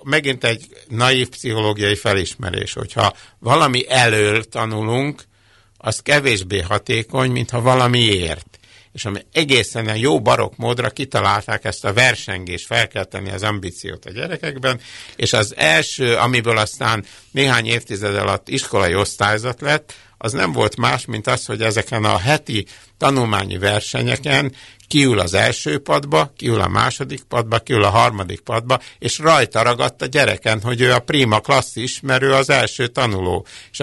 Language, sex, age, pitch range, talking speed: Hungarian, male, 60-79, 105-125 Hz, 145 wpm